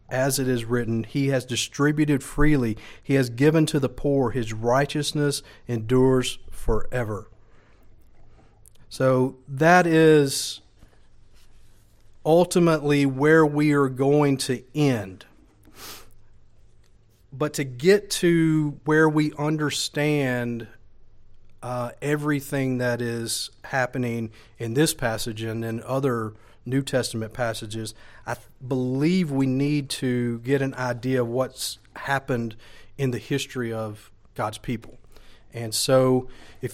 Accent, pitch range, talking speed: American, 110-145 Hz, 115 wpm